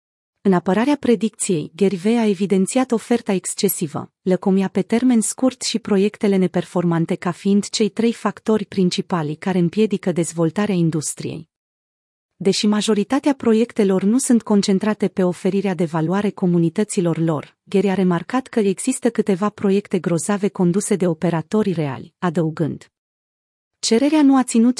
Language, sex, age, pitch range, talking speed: Romanian, female, 30-49, 180-220 Hz, 130 wpm